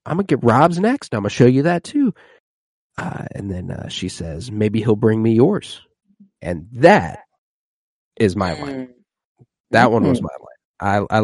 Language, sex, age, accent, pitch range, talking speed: English, male, 30-49, American, 95-125 Hz, 180 wpm